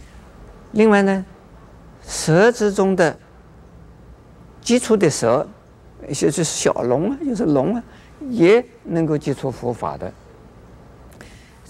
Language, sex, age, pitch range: Chinese, male, 50-69, 120-195 Hz